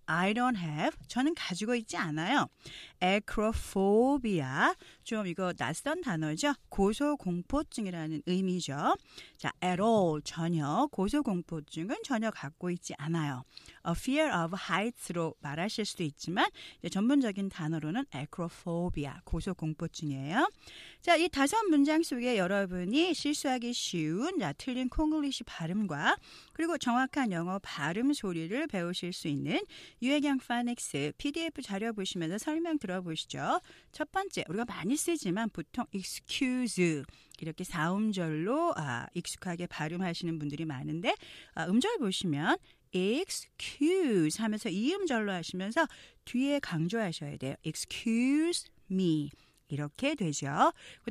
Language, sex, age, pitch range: Korean, female, 40-59, 165-265 Hz